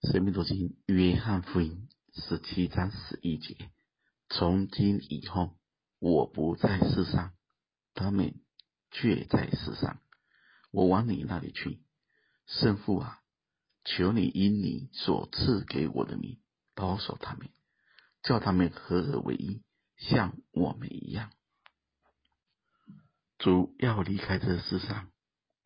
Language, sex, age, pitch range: Chinese, male, 50-69, 90-110 Hz